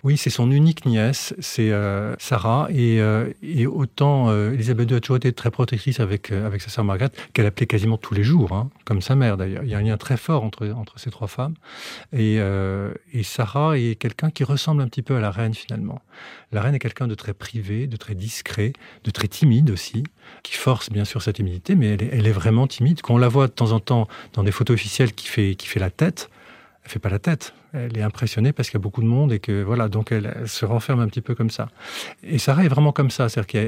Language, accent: French, French